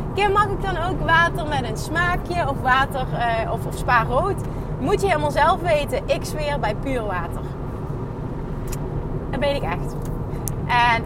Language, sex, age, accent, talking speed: Dutch, female, 20-39, Dutch, 170 wpm